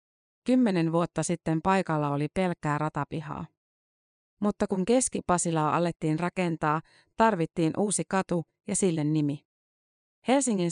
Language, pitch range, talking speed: Finnish, 155-185 Hz, 105 wpm